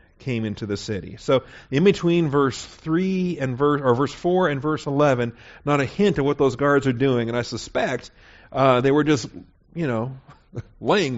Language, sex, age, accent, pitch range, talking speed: English, male, 40-59, American, 110-145 Hz, 195 wpm